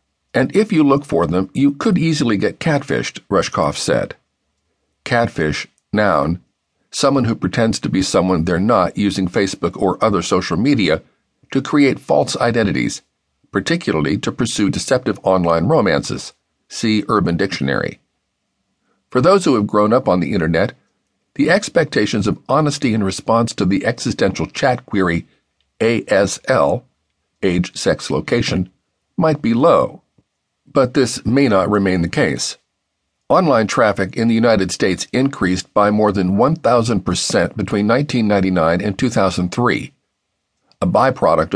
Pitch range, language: 95-135 Hz, English